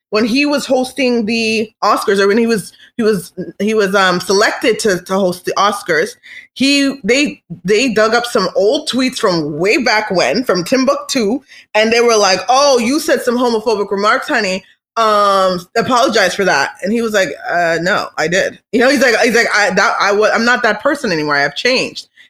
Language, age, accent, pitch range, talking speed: English, 20-39, American, 190-245 Hz, 200 wpm